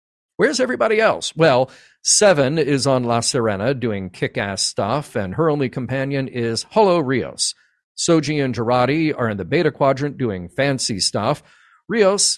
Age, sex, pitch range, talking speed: 50-69, male, 110-145 Hz, 150 wpm